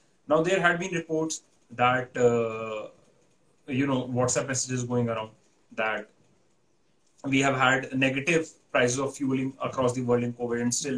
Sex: male